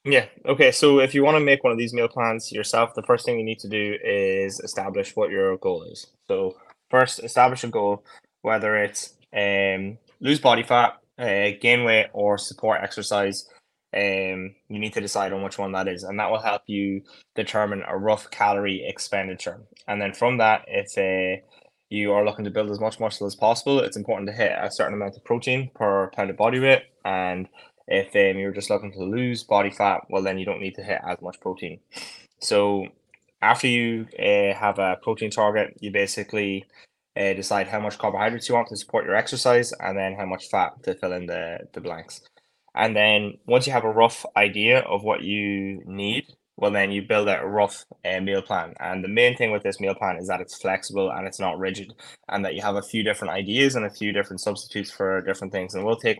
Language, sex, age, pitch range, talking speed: English, male, 10-29, 100-115 Hz, 220 wpm